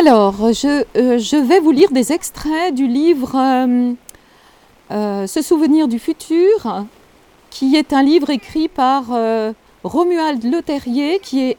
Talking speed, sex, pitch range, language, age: 145 wpm, female, 255-330 Hz, French, 40-59